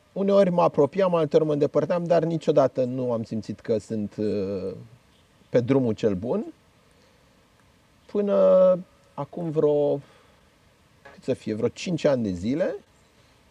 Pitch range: 125-175 Hz